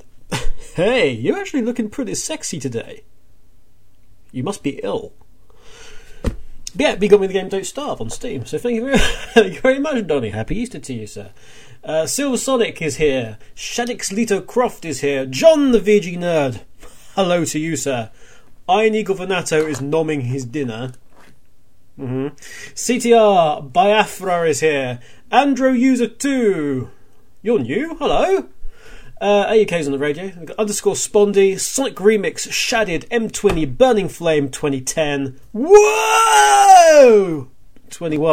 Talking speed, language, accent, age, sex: 135 wpm, English, British, 30-49, male